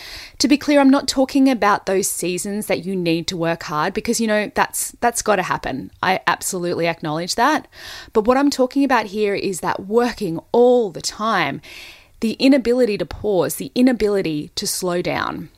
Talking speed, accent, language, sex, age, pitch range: 185 wpm, Australian, English, female, 20-39, 175-245 Hz